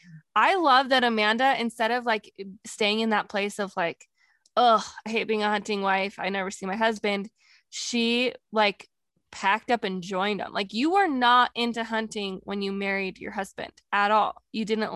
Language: English